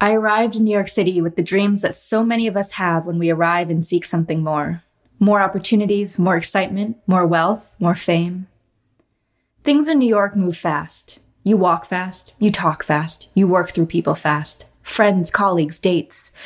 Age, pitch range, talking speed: 20-39, 170-205 Hz, 180 wpm